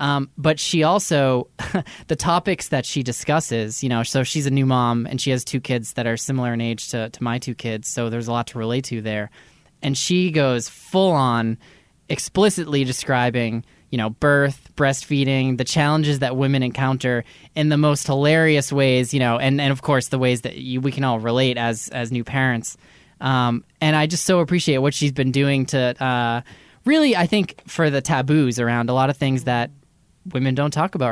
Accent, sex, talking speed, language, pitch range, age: American, male, 205 wpm, English, 120-150 Hz, 20-39